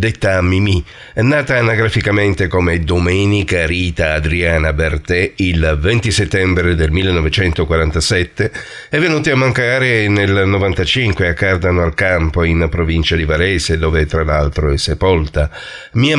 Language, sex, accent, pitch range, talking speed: Italian, male, native, 80-115 Hz, 125 wpm